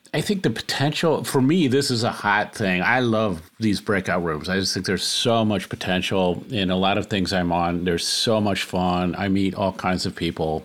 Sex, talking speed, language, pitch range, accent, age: male, 225 wpm, English, 90-110 Hz, American, 50-69